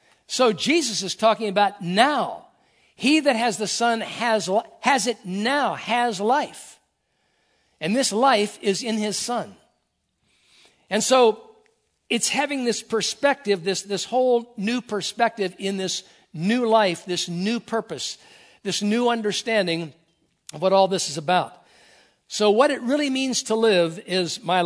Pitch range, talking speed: 170-225 Hz, 145 wpm